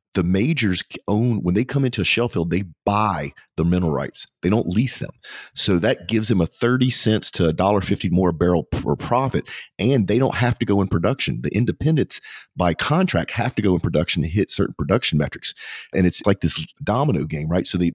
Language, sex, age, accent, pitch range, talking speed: English, male, 40-59, American, 85-110 Hz, 215 wpm